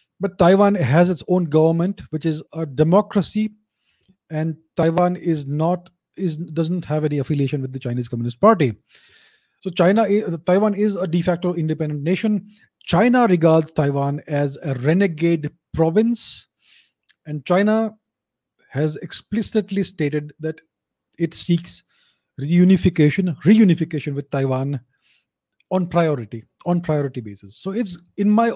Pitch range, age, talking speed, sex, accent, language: 150-195 Hz, 30-49, 130 wpm, male, Indian, English